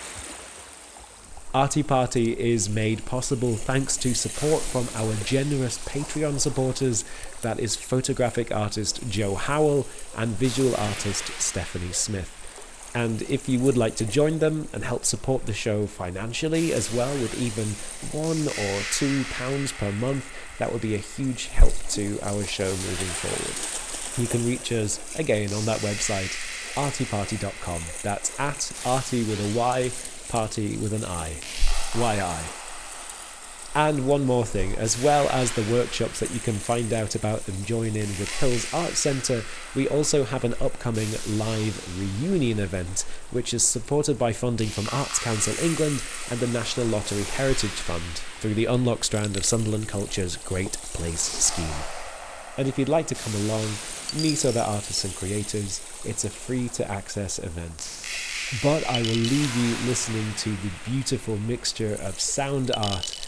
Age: 30-49